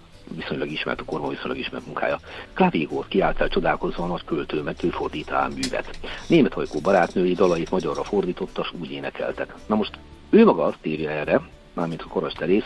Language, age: Hungarian, 60-79